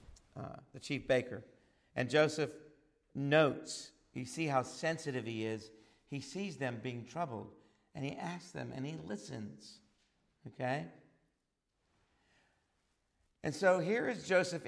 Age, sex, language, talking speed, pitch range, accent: 50-69, male, English, 125 wpm, 125-175 Hz, American